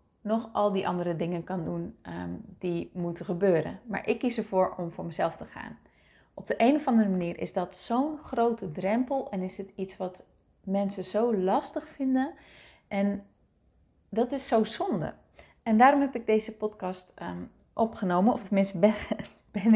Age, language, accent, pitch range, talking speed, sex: 30-49, Dutch, Dutch, 180-220 Hz, 165 wpm, female